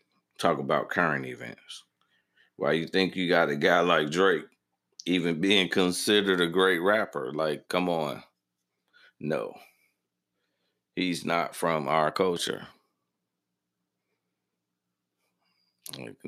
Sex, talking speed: male, 105 wpm